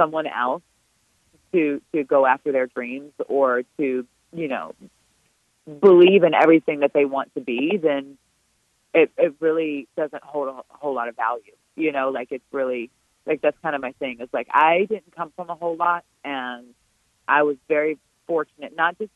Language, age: English, 30-49